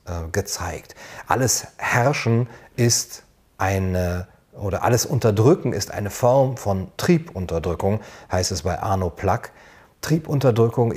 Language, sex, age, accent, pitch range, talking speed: German, male, 40-59, German, 100-130 Hz, 105 wpm